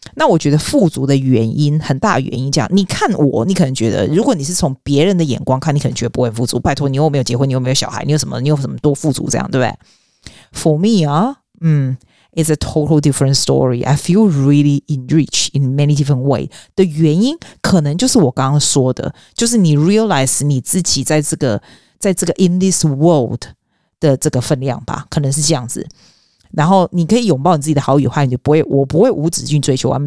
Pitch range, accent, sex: 135-170 Hz, native, female